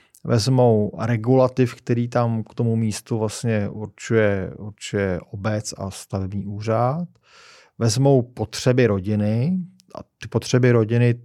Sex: male